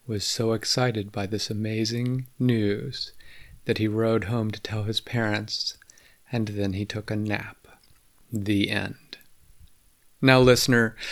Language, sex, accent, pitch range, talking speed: English, male, American, 105-130 Hz, 135 wpm